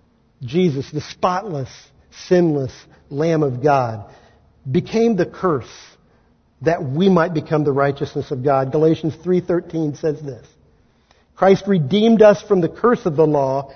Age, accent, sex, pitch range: 50-69, American, male, 140-205 Hz